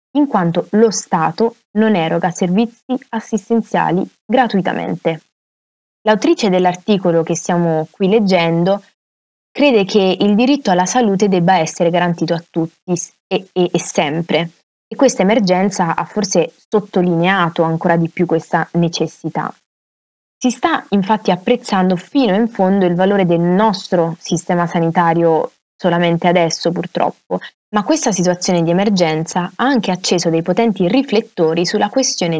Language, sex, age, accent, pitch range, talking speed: Italian, female, 20-39, native, 170-215 Hz, 130 wpm